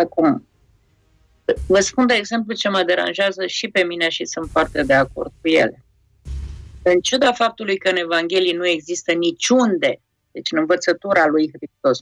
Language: Polish